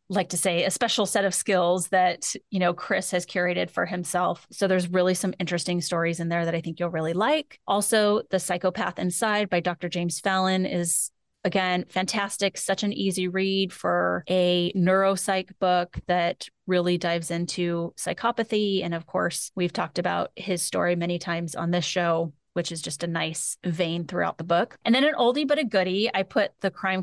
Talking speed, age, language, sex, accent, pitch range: 195 wpm, 30-49, English, female, American, 175-195 Hz